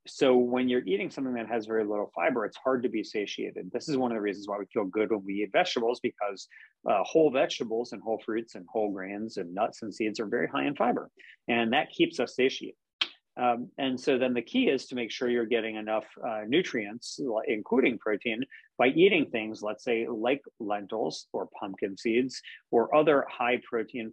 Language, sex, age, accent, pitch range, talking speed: English, male, 30-49, American, 110-140 Hz, 205 wpm